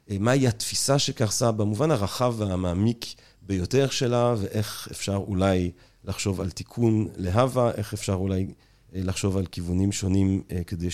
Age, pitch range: 40-59, 95-110 Hz